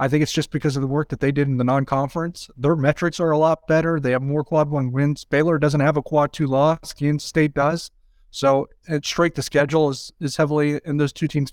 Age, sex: 30-49, male